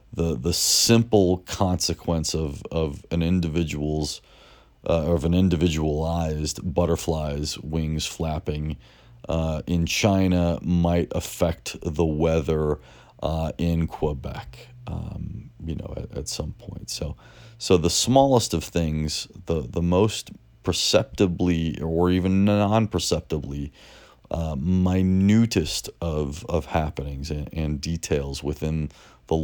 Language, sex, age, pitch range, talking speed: English, male, 30-49, 75-95 Hz, 115 wpm